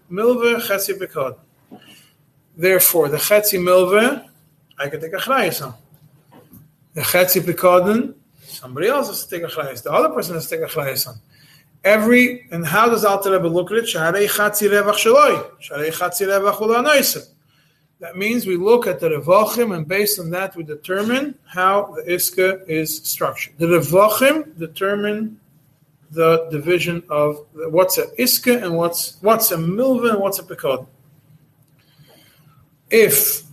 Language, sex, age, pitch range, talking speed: English, male, 30-49, 150-205 Hz, 140 wpm